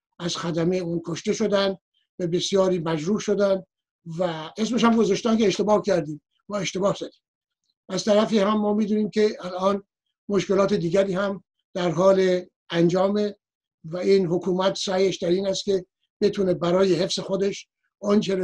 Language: Persian